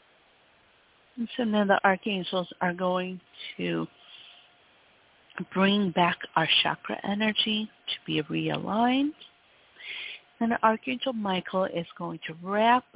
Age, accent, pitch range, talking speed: 50-69, American, 175-230 Hz, 105 wpm